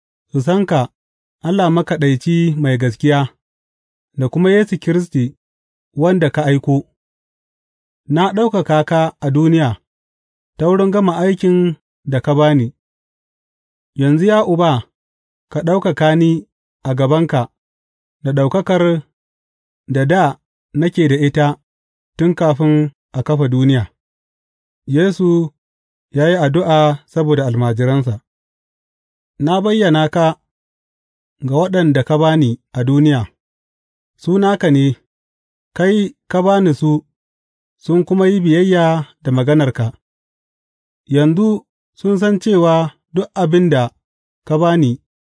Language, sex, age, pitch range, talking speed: English, male, 30-49, 120-175 Hz, 75 wpm